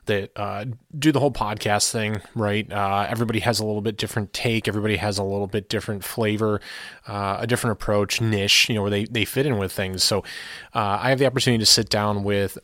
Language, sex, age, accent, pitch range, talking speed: English, male, 20-39, American, 100-115 Hz, 225 wpm